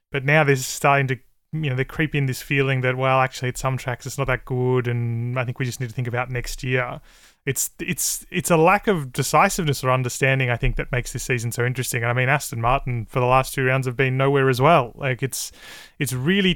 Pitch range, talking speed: 125-145 Hz, 250 wpm